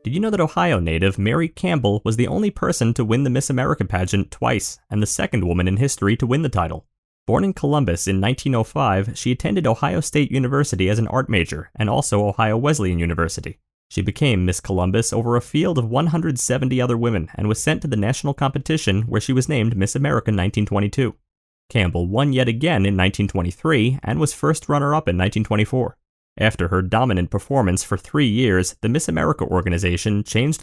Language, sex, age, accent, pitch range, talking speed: English, male, 30-49, American, 100-145 Hz, 190 wpm